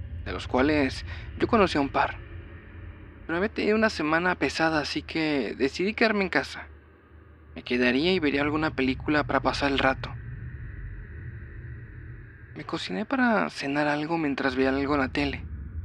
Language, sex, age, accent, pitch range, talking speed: Spanish, male, 30-49, Mexican, 95-155 Hz, 155 wpm